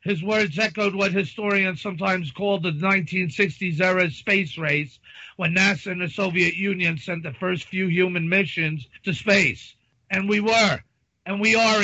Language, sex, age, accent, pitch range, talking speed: English, male, 50-69, American, 170-205 Hz, 160 wpm